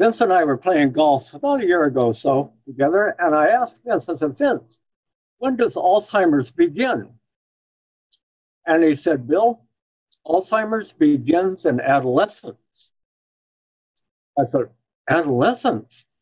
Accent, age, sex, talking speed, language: American, 60-79, male, 130 wpm, English